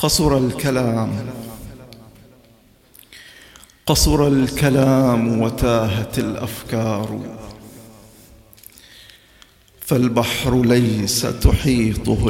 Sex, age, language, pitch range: male, 50-69, English, 115-135 Hz